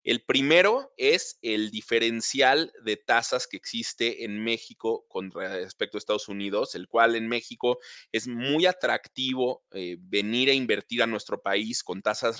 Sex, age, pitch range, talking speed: male, 30-49, 105-130 Hz, 155 wpm